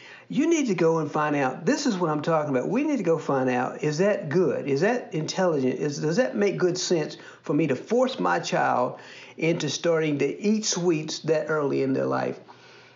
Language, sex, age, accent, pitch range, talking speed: English, male, 50-69, American, 140-195 Hz, 220 wpm